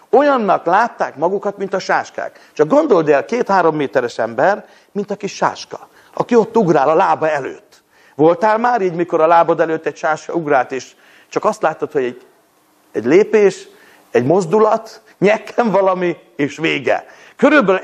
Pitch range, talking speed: 180-250 Hz, 160 wpm